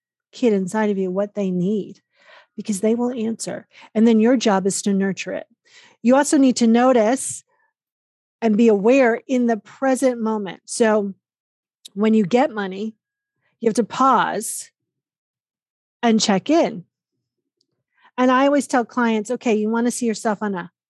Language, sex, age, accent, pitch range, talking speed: English, female, 40-59, American, 205-260 Hz, 160 wpm